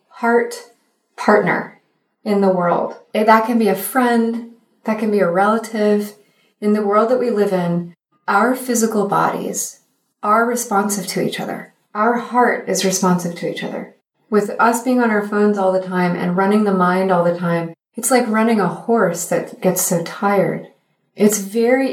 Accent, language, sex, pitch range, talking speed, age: American, English, female, 185-235 Hz, 175 wpm, 30-49